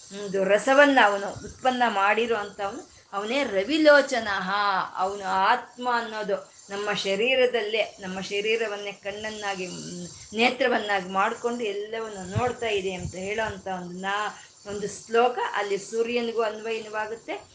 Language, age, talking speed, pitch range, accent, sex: Kannada, 20-39, 95 wpm, 200-250 Hz, native, female